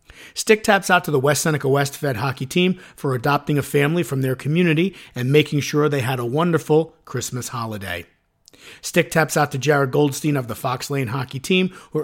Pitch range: 130-155 Hz